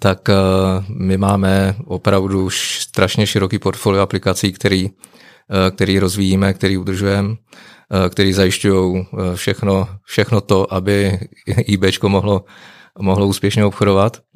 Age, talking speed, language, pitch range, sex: 30-49, 100 wpm, Czech, 95-100 Hz, male